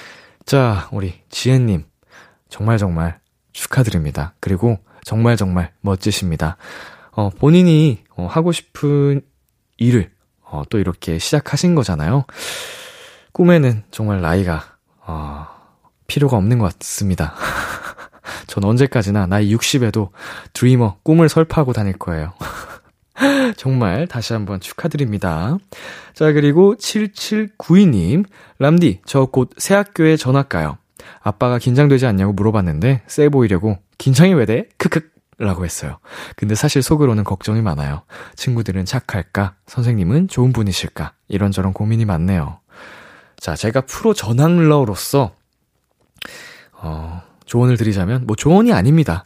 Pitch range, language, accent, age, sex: 95-145 Hz, Korean, native, 20-39, male